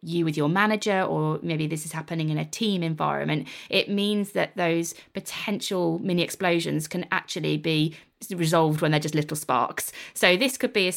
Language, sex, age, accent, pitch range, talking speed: English, female, 20-39, British, 160-185 Hz, 185 wpm